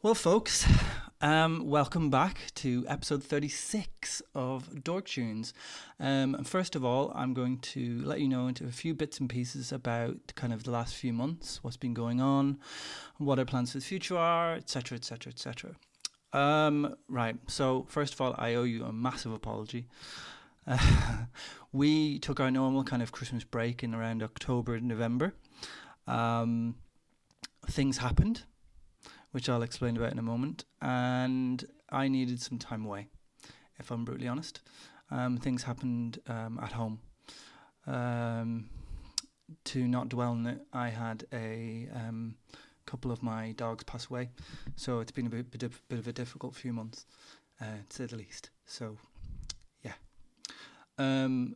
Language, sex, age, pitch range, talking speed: English, male, 30-49, 115-140 Hz, 155 wpm